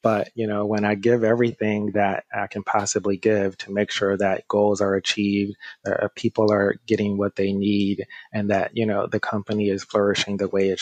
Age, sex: 30-49, male